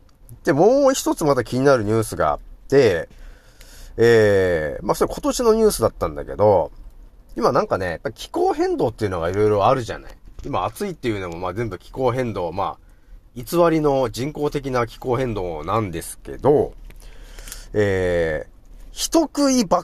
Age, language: 40-59, Japanese